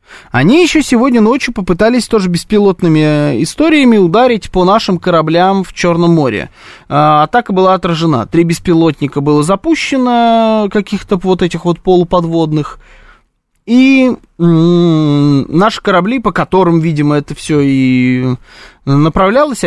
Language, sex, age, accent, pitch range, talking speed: Russian, male, 20-39, native, 155-220 Hz, 120 wpm